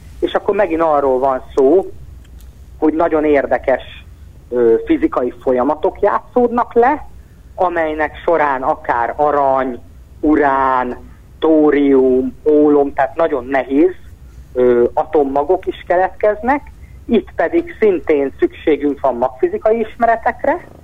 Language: Hungarian